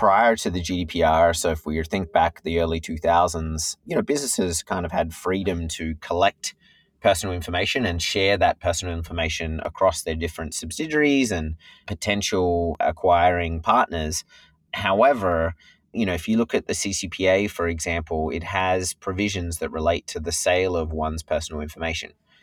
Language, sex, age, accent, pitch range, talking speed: English, male, 30-49, Australian, 80-95 Hz, 160 wpm